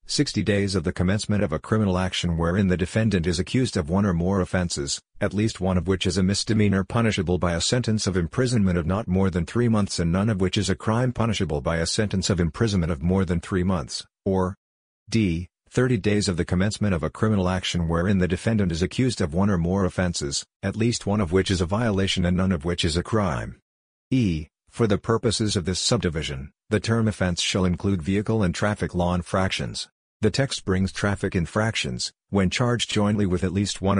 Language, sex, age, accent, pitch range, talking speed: English, male, 50-69, American, 90-105 Hz, 215 wpm